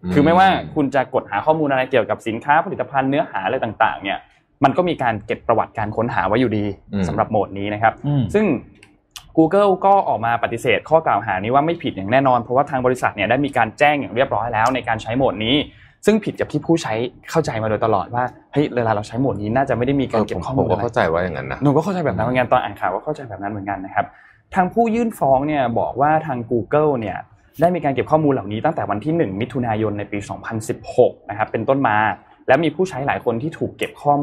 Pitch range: 110-150 Hz